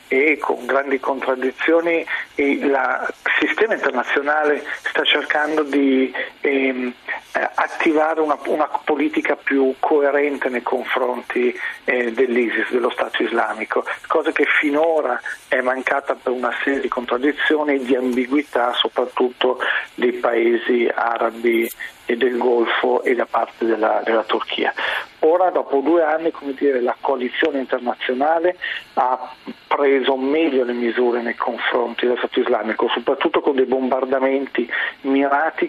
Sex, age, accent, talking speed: male, 50-69, native, 130 wpm